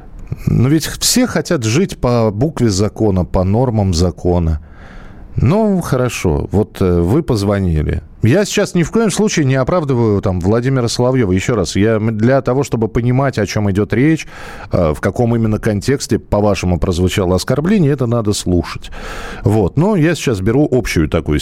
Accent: native